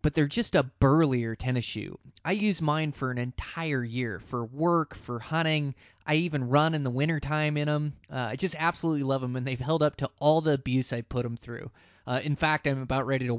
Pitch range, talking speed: 125-155 Hz, 235 wpm